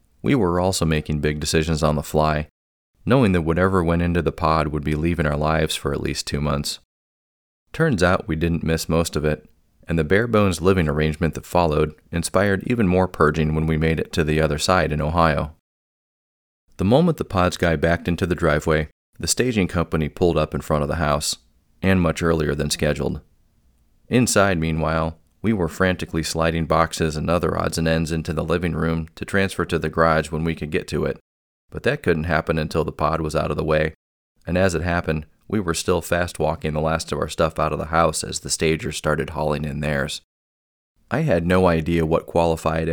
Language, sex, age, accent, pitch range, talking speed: English, male, 30-49, American, 75-85 Hz, 205 wpm